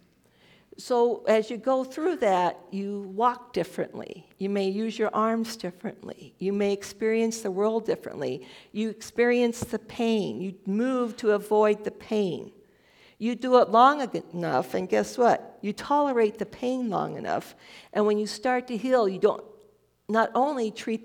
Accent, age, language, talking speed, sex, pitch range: American, 50-69, English, 160 wpm, female, 180-235 Hz